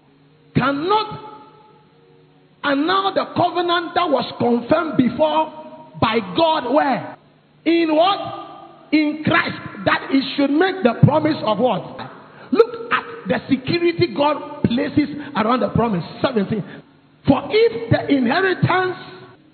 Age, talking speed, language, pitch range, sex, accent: 50-69, 120 wpm, English, 240-345 Hz, male, Nigerian